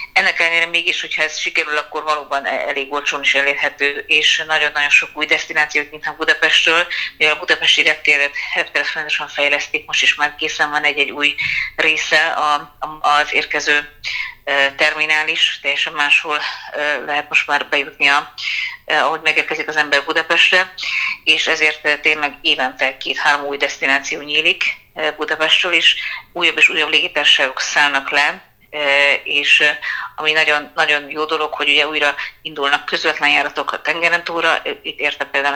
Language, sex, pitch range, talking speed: Hungarian, female, 145-160 Hz, 135 wpm